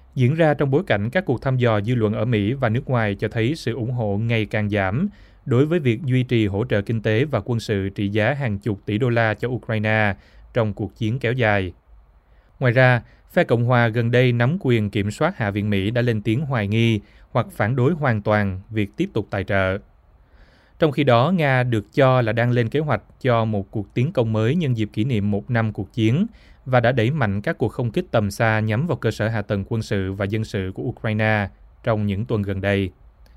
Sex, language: male, Vietnamese